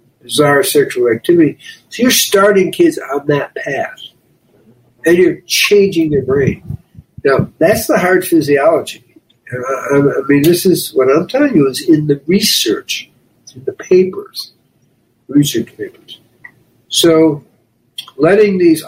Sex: male